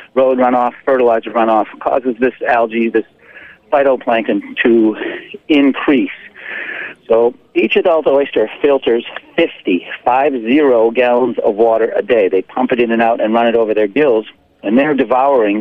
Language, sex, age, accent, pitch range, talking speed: English, male, 40-59, American, 115-165 Hz, 145 wpm